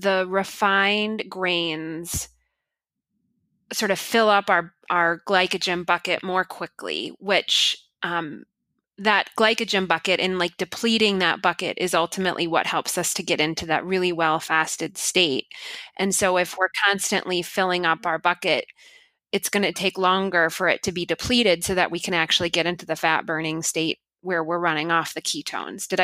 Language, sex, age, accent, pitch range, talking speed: English, female, 20-39, American, 170-205 Hz, 165 wpm